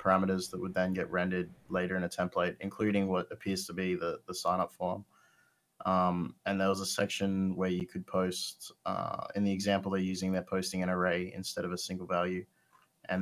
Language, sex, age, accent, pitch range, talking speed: English, male, 20-39, Australian, 90-100 Hz, 205 wpm